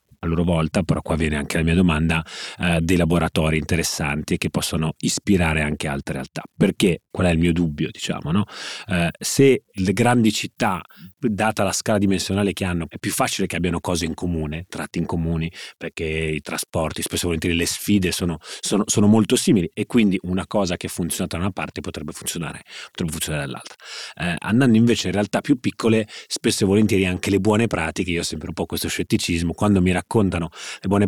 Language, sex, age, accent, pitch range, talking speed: Italian, male, 30-49, native, 85-100 Hz, 205 wpm